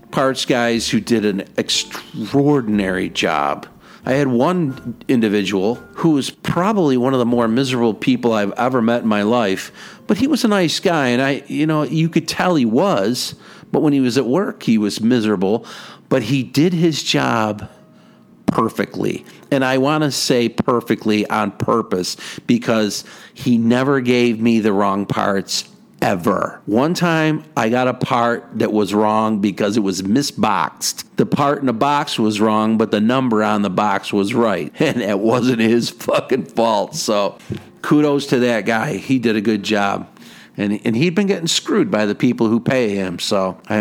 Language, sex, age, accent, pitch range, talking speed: English, male, 50-69, American, 105-140 Hz, 180 wpm